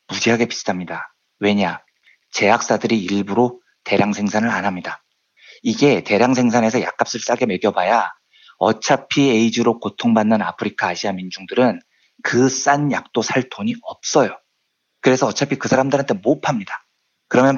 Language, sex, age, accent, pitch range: Korean, male, 40-59, native, 110-140 Hz